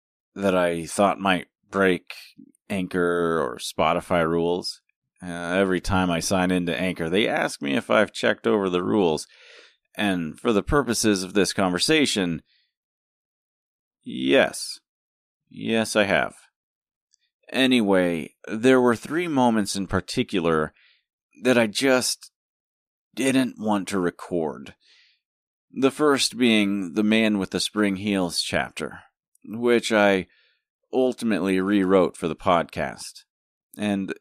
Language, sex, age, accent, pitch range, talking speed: English, male, 30-49, American, 90-110 Hz, 120 wpm